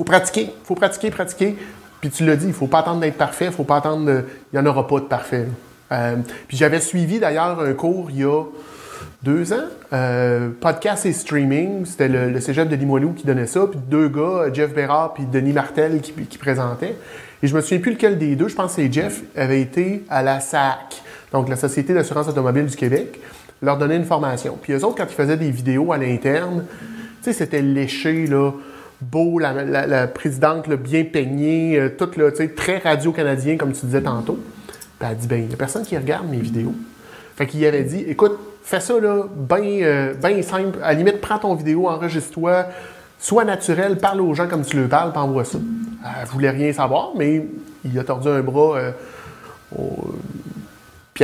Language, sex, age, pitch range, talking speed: French, male, 30-49, 135-175 Hz, 210 wpm